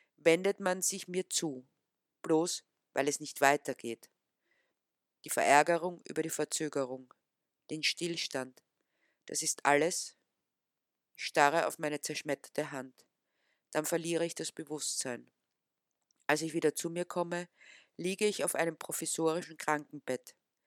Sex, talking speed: female, 120 wpm